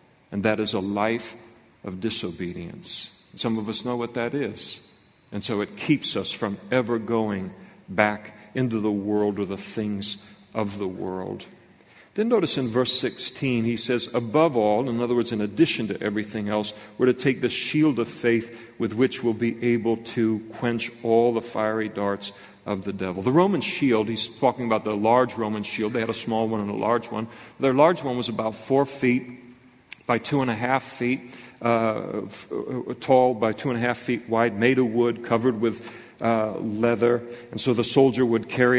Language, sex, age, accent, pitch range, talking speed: English, male, 50-69, American, 110-125 Hz, 185 wpm